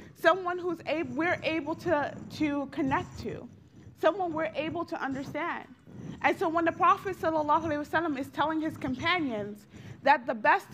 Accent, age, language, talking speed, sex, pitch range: American, 30-49, English, 150 wpm, female, 250-320 Hz